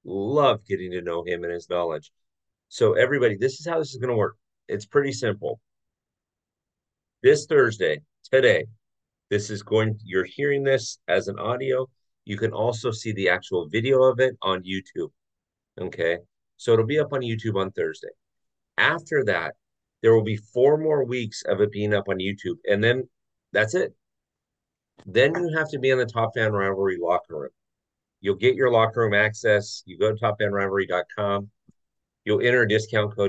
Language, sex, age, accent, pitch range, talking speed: English, male, 40-59, American, 100-130 Hz, 175 wpm